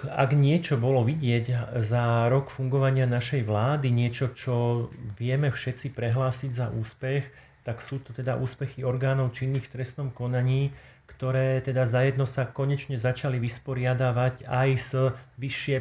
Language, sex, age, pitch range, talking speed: Slovak, male, 40-59, 125-140 Hz, 135 wpm